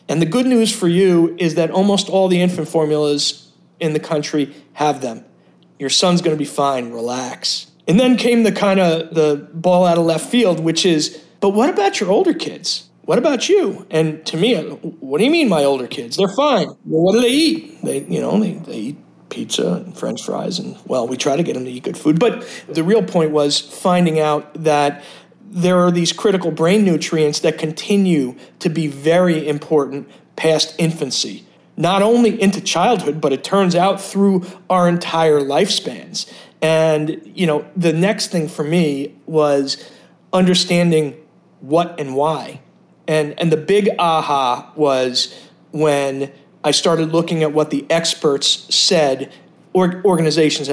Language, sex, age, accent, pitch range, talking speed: English, male, 40-59, American, 150-190 Hz, 170 wpm